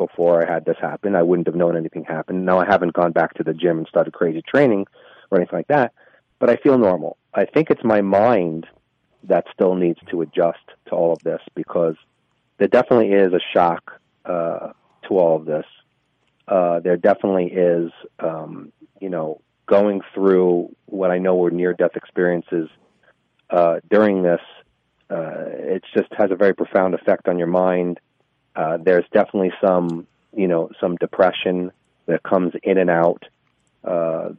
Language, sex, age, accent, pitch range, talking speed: English, male, 40-59, American, 85-95 Hz, 175 wpm